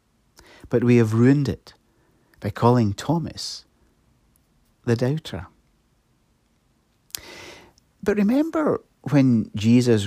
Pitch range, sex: 110-150 Hz, male